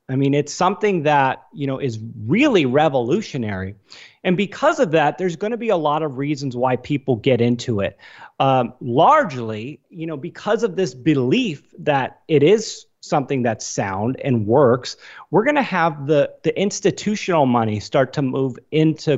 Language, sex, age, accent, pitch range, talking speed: English, male, 30-49, American, 125-160 Hz, 170 wpm